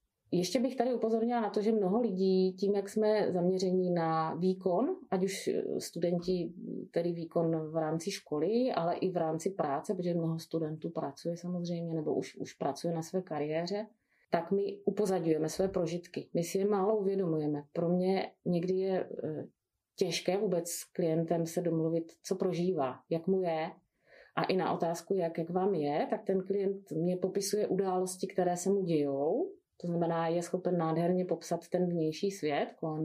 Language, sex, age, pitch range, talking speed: Czech, female, 30-49, 165-200 Hz, 170 wpm